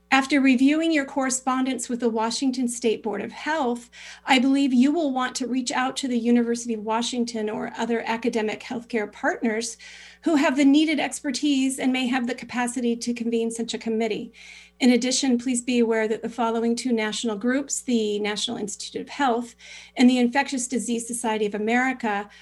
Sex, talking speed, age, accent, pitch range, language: female, 180 wpm, 40-59, American, 225-265 Hz, English